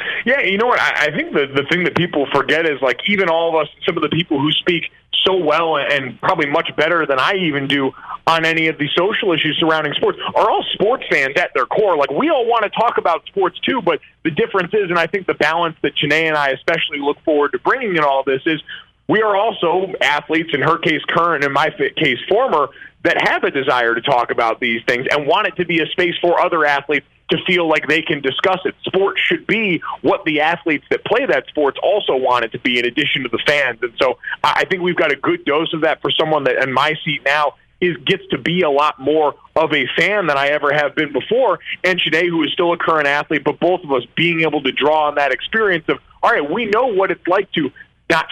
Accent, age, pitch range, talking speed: American, 30-49, 145-170 Hz, 250 wpm